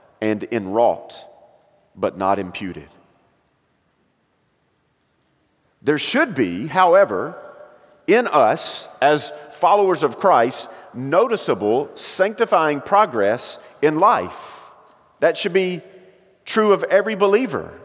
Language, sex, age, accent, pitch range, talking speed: English, male, 40-59, American, 140-205 Hz, 90 wpm